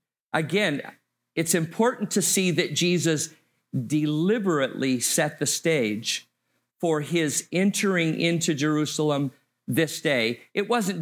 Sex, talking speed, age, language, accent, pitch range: male, 110 wpm, 50-69, English, American, 140-180 Hz